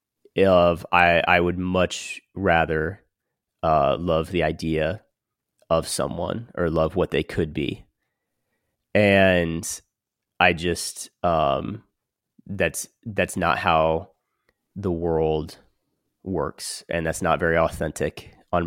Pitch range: 85-95 Hz